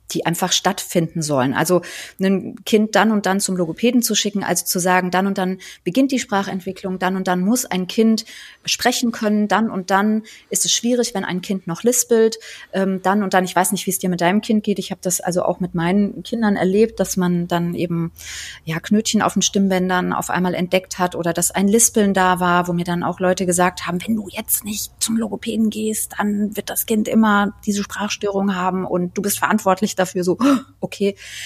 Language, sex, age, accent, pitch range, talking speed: German, female, 30-49, German, 180-215 Hz, 210 wpm